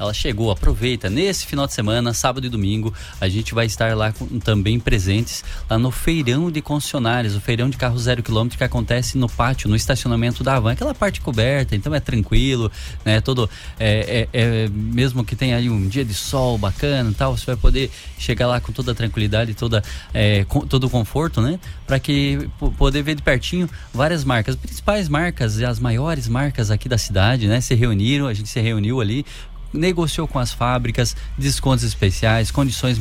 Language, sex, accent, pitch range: English, male, Brazilian, 110-130 Hz